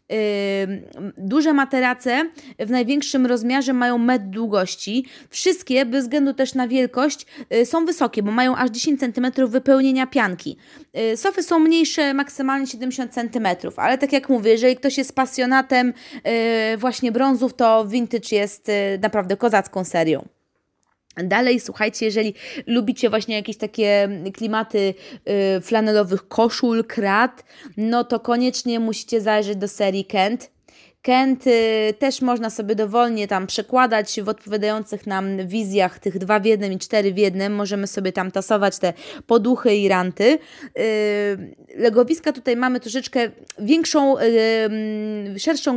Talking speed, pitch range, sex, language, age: 125 wpm, 215-270 Hz, female, Polish, 20-39